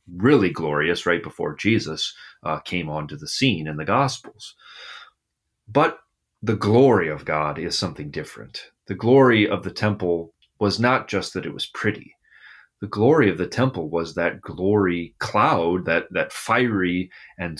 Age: 30-49